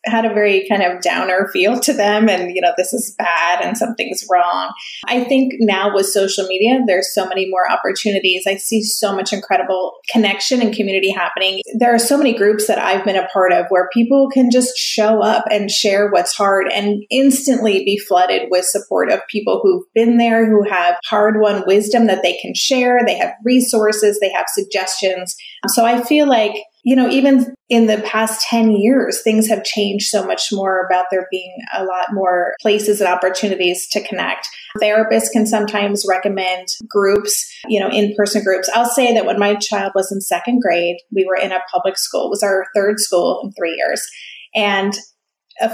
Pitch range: 190-230 Hz